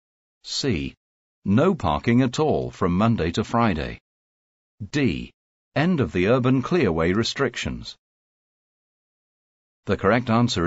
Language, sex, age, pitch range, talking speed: English, male, 50-69, 75-120 Hz, 105 wpm